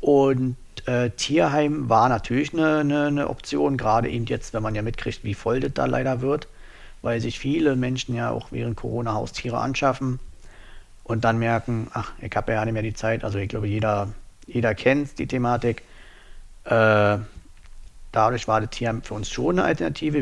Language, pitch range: German, 105-125 Hz